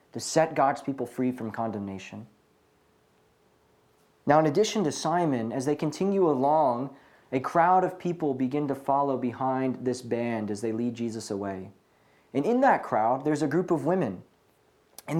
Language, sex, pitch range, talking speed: English, male, 130-175 Hz, 160 wpm